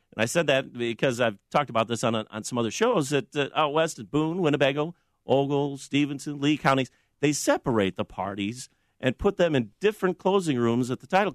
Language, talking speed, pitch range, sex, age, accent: English, 205 wpm, 105-150 Hz, male, 50-69, American